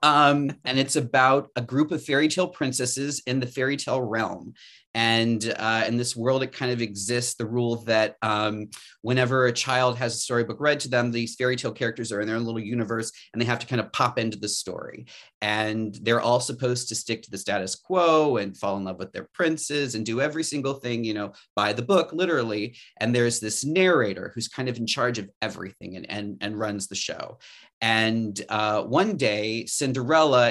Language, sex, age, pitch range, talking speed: English, male, 30-49, 110-130 Hz, 210 wpm